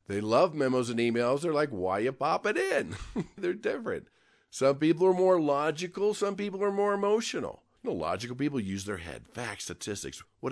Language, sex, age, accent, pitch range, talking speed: English, male, 40-59, American, 120-175 Hz, 200 wpm